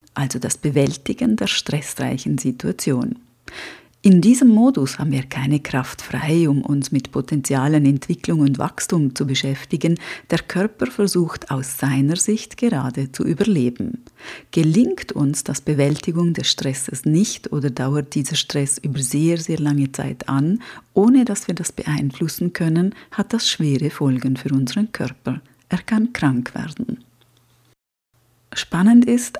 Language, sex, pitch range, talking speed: German, female, 135-175 Hz, 140 wpm